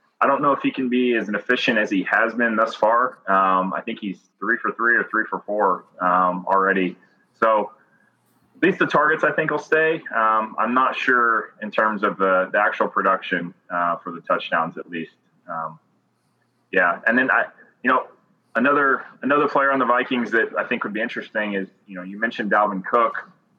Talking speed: 205 wpm